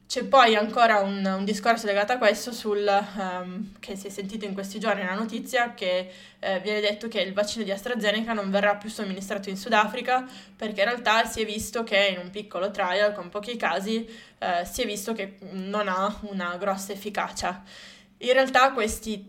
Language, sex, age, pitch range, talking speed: Italian, female, 20-39, 190-220 Hz, 195 wpm